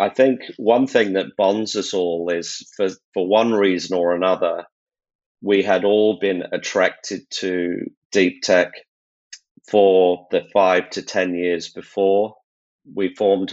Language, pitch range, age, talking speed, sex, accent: English, 90-100 Hz, 40-59, 140 wpm, male, British